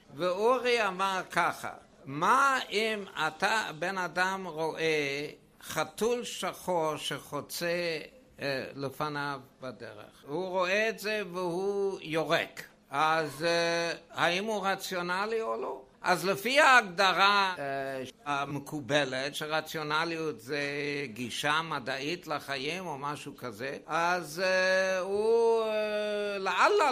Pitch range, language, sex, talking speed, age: 155-215 Hz, Hebrew, male, 105 wpm, 60-79